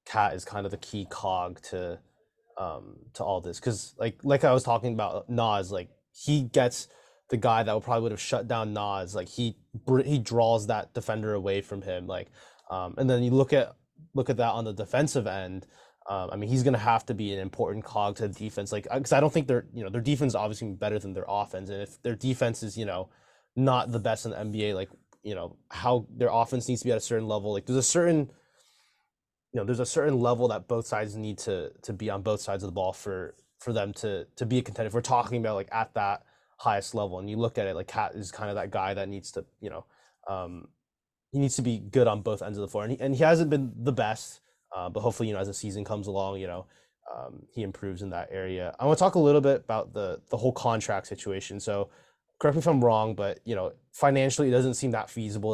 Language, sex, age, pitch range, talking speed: English, male, 20-39, 100-125 Hz, 255 wpm